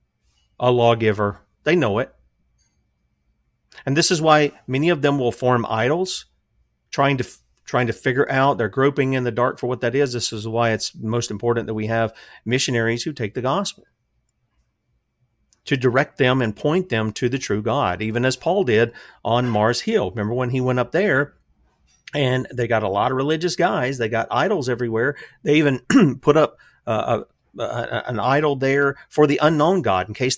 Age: 40-59